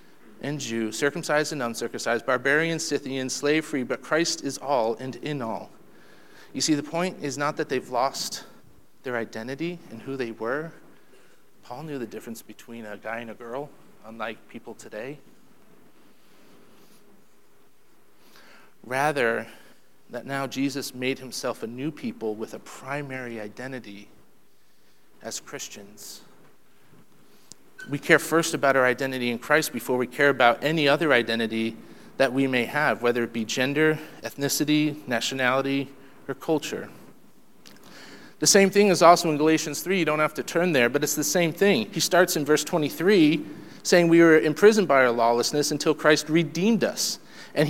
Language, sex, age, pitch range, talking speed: English, male, 40-59, 125-155 Hz, 150 wpm